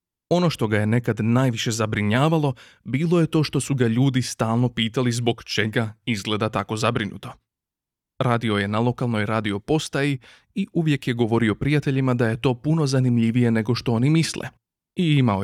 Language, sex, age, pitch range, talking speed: Croatian, male, 30-49, 110-140 Hz, 165 wpm